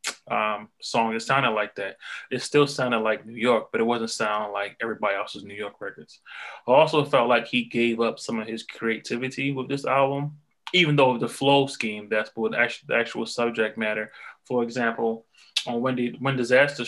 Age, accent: 20-39, American